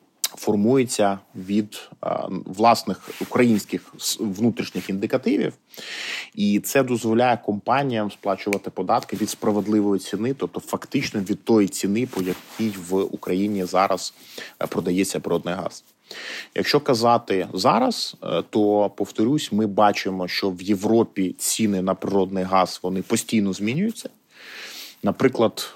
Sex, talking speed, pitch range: male, 110 wpm, 95-115 Hz